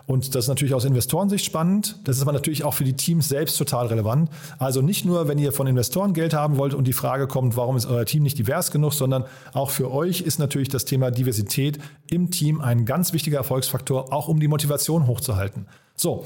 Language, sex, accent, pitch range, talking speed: German, male, German, 130-155 Hz, 220 wpm